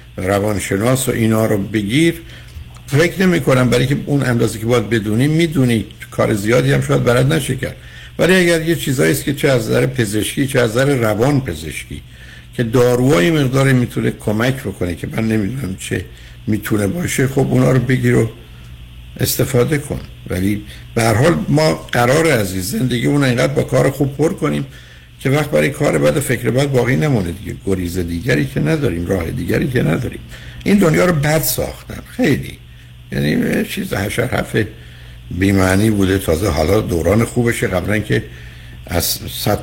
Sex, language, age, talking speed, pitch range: male, Persian, 60-79, 155 wpm, 80-125 Hz